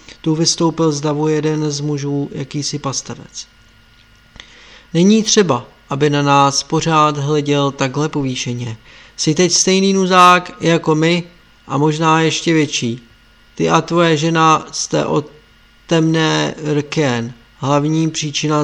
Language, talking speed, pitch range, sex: Czech, 120 wpm, 135-160 Hz, male